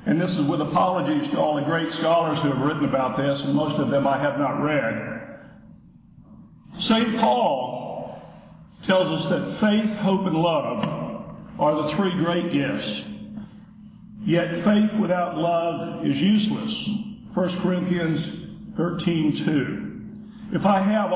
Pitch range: 170-210 Hz